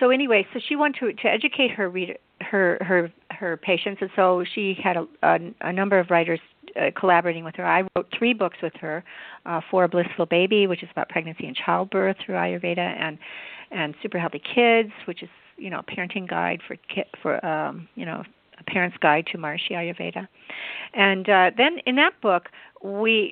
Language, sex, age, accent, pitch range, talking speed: English, female, 50-69, American, 170-215 Hz, 200 wpm